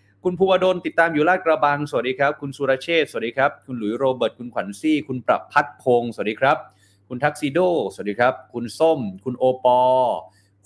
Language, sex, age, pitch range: Thai, male, 30-49, 115-155 Hz